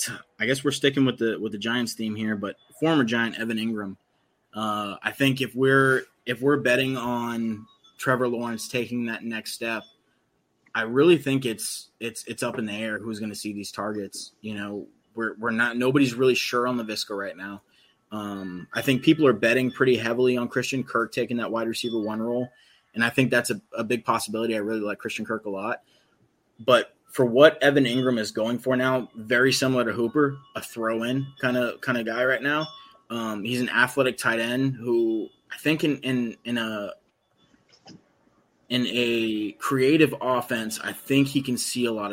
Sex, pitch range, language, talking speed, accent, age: male, 110-130 Hz, English, 195 wpm, American, 20-39